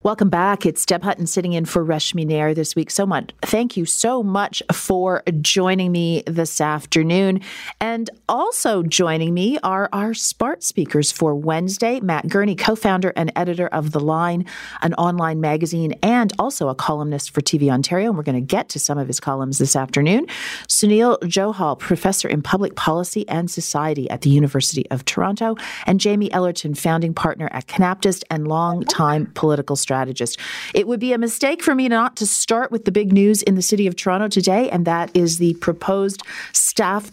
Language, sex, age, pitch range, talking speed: English, female, 40-59, 155-200 Hz, 185 wpm